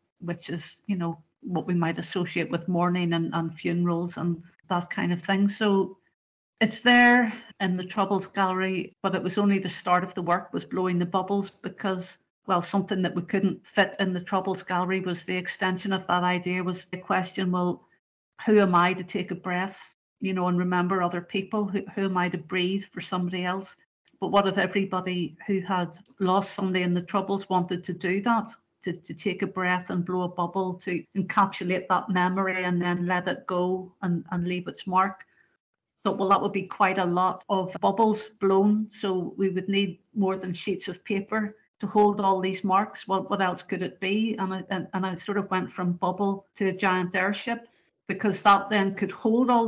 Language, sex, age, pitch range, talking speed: English, female, 50-69, 180-200 Hz, 210 wpm